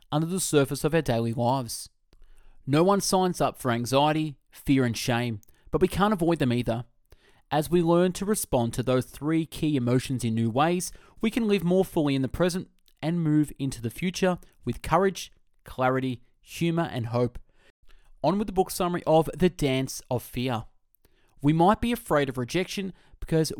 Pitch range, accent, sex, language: 120-175 Hz, Australian, male, English